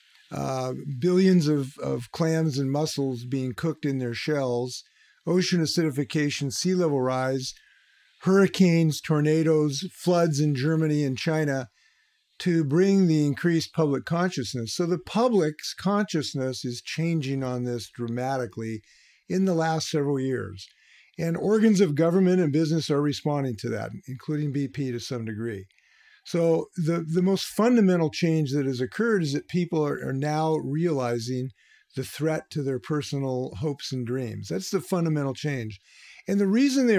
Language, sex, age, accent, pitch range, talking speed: English, male, 50-69, American, 135-170 Hz, 150 wpm